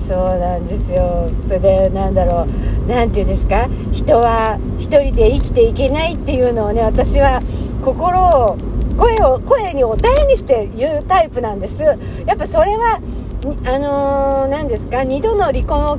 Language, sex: Japanese, female